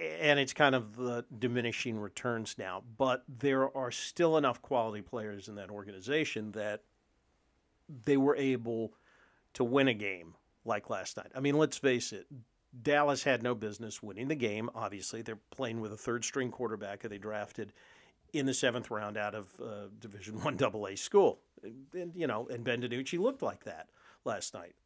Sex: male